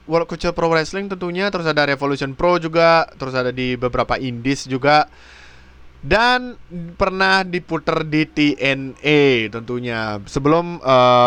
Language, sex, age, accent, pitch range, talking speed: Indonesian, male, 20-39, native, 125-155 Hz, 115 wpm